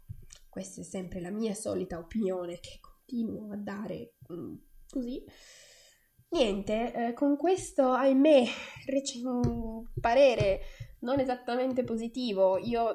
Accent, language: native, Italian